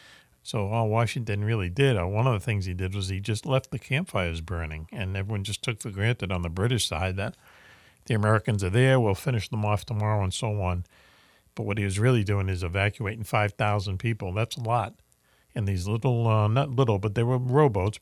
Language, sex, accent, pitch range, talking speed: English, male, American, 100-125 Hz, 215 wpm